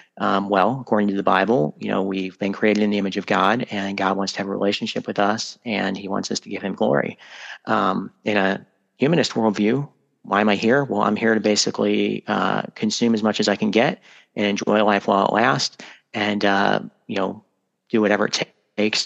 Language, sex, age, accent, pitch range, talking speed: English, male, 30-49, American, 100-110 Hz, 220 wpm